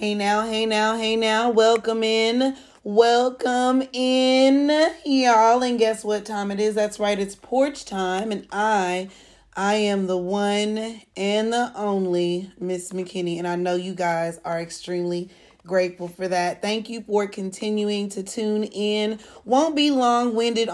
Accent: American